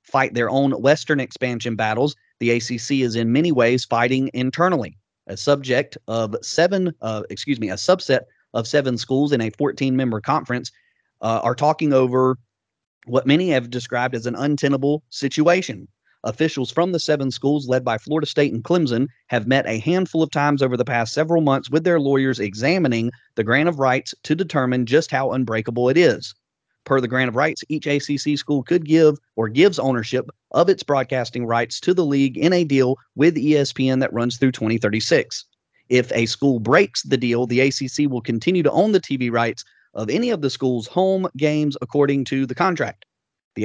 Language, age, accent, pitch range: English, 30-49, American, 120-150 Hz